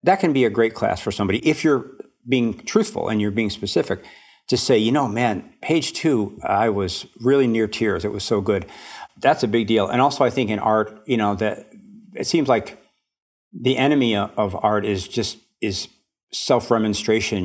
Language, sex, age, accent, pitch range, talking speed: English, male, 50-69, American, 100-120 Hz, 195 wpm